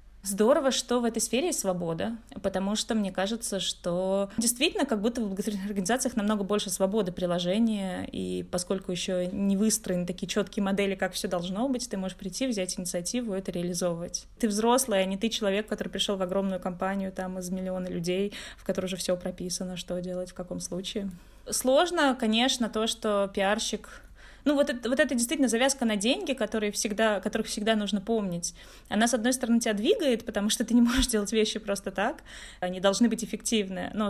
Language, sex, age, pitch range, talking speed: Russian, female, 20-39, 190-230 Hz, 180 wpm